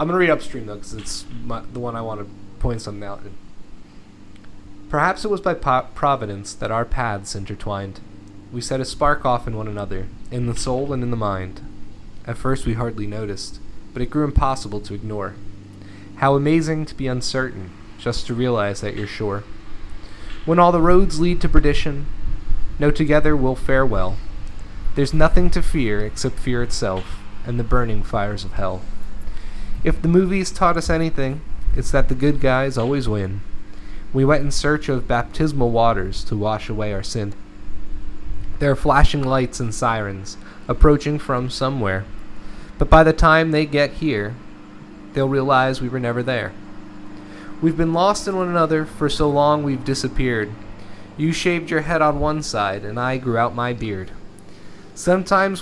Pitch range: 100-145 Hz